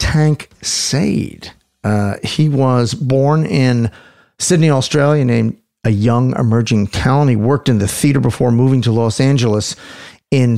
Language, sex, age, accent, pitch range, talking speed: English, male, 50-69, American, 105-130 Hz, 140 wpm